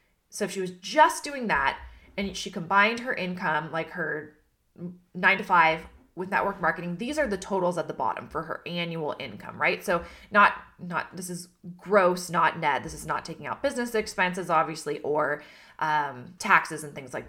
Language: English